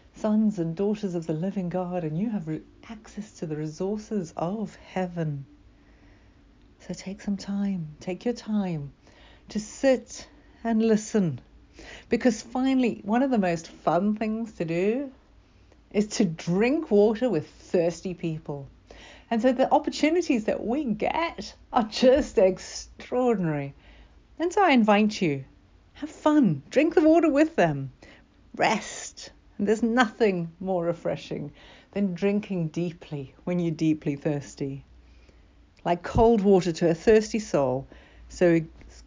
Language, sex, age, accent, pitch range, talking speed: English, female, 60-79, British, 155-220 Hz, 135 wpm